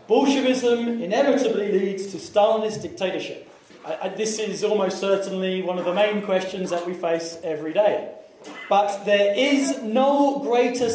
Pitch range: 185-225 Hz